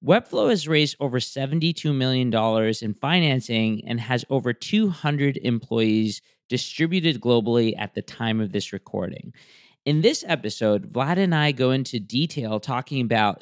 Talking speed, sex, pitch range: 145 wpm, male, 110-150 Hz